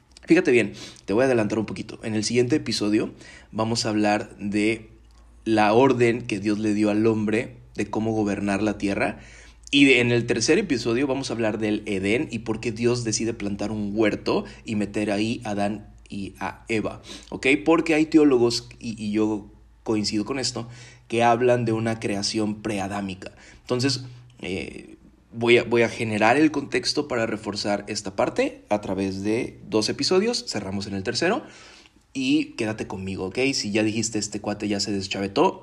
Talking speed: 175 wpm